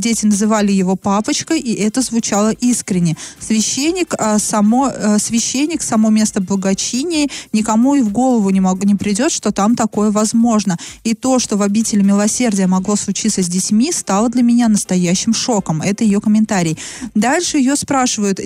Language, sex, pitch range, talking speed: Russian, female, 205-245 Hz, 155 wpm